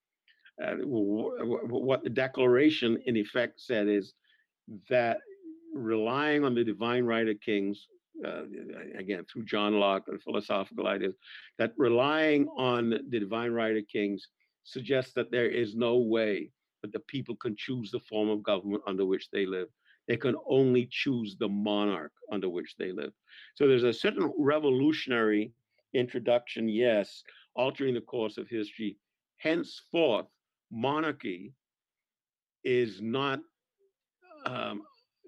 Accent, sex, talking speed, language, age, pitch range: American, male, 135 wpm, English, 50-69, 110-140 Hz